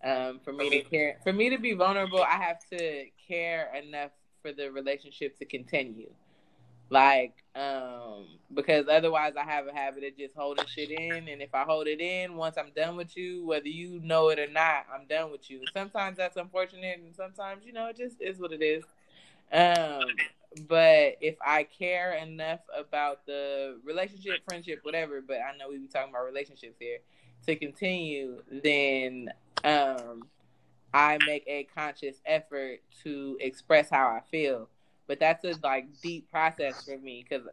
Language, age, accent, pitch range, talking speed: English, 20-39, American, 135-170 Hz, 170 wpm